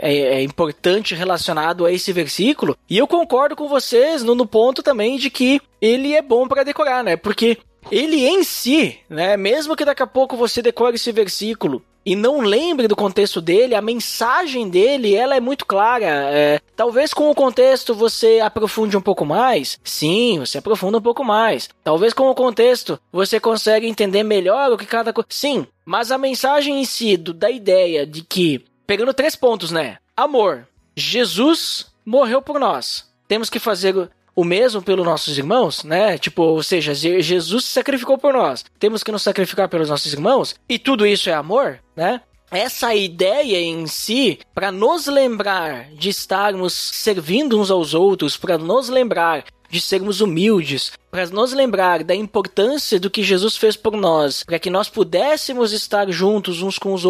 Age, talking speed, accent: 20-39, 170 wpm, Brazilian